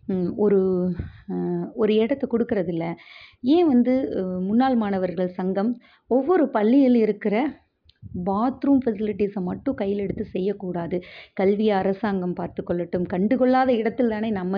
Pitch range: 180-220 Hz